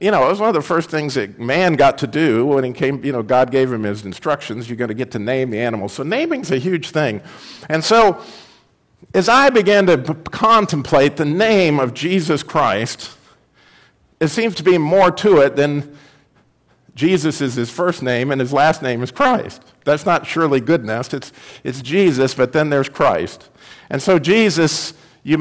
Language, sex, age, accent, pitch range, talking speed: English, male, 50-69, American, 125-165 Hz, 200 wpm